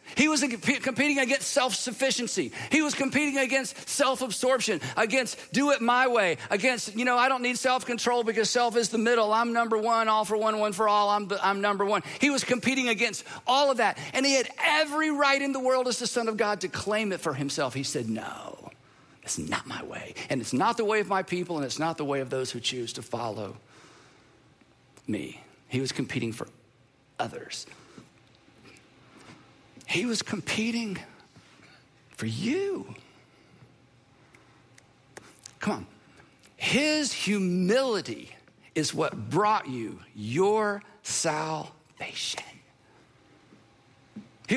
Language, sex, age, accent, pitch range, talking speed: English, male, 50-69, American, 185-265 Hz, 150 wpm